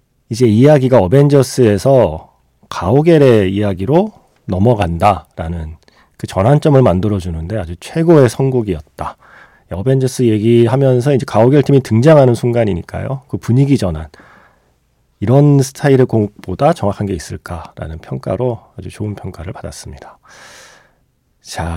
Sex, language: male, Korean